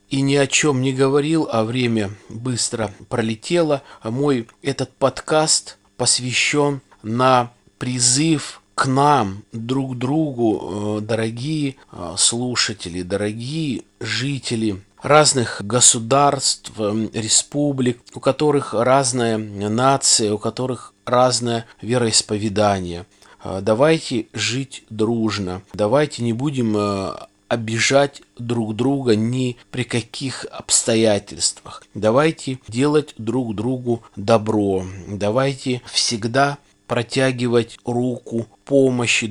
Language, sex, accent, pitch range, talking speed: Russian, male, native, 110-135 Hz, 90 wpm